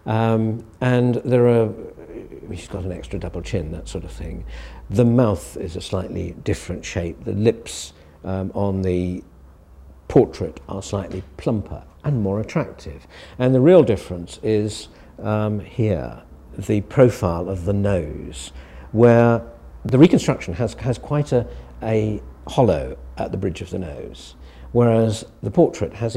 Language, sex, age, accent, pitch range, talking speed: English, male, 50-69, British, 85-120 Hz, 150 wpm